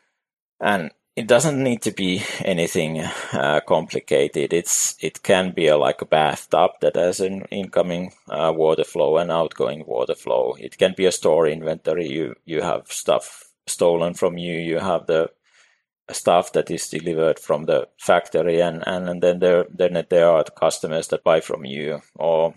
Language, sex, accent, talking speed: English, male, Finnish, 175 wpm